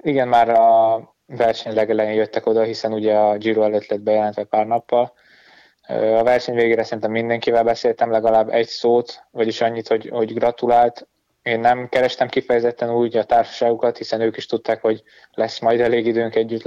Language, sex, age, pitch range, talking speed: Hungarian, male, 20-39, 110-115 Hz, 170 wpm